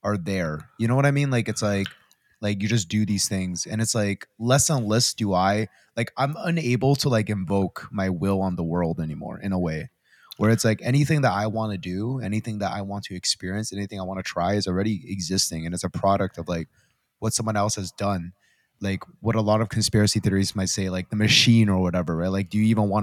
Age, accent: 20-39, American